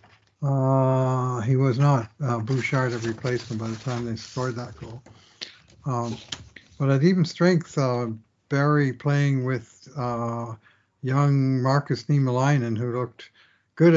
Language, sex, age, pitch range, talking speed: English, male, 60-79, 115-140 Hz, 135 wpm